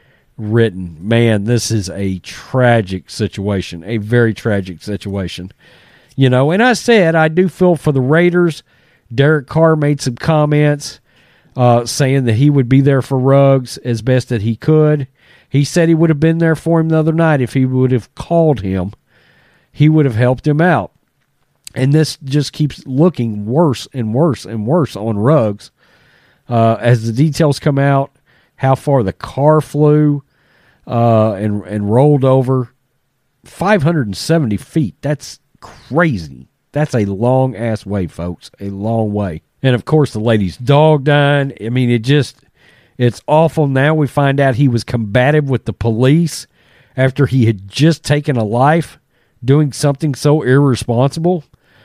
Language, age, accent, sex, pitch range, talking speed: English, 40-59, American, male, 115-150 Hz, 165 wpm